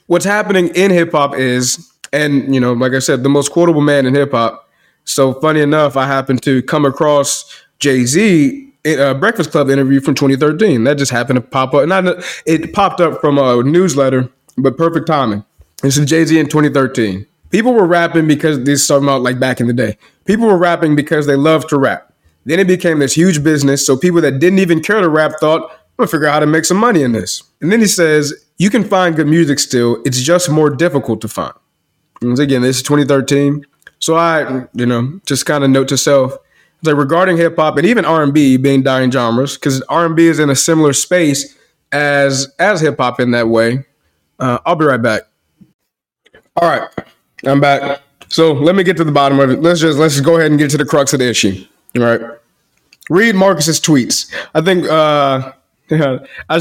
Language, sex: English, male